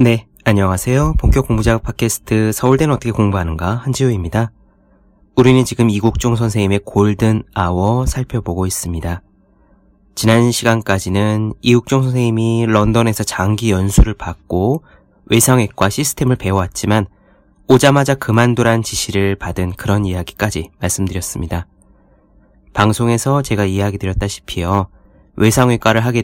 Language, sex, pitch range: Korean, male, 95-120 Hz